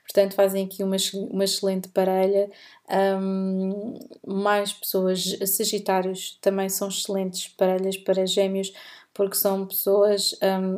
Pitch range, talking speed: 190-200 Hz, 115 wpm